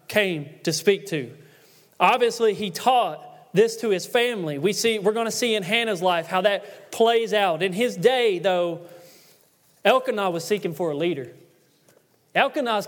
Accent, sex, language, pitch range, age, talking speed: American, male, English, 180-235 Hz, 30-49, 165 wpm